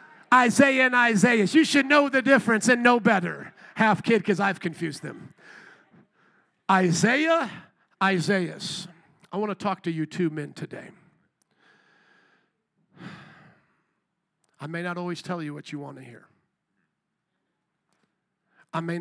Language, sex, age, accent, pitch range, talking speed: English, male, 50-69, American, 155-195 Hz, 130 wpm